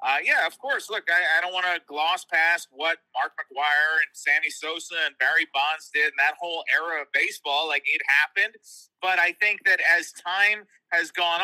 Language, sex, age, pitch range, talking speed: English, male, 30-49, 165-235 Hz, 205 wpm